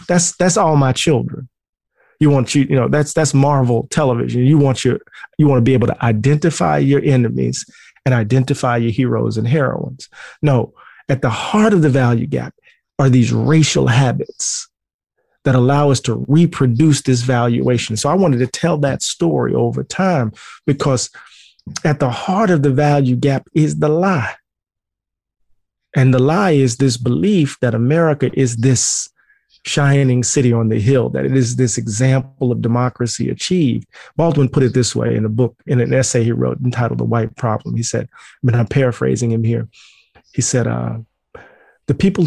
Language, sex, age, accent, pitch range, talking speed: English, male, 40-59, American, 120-145 Hz, 175 wpm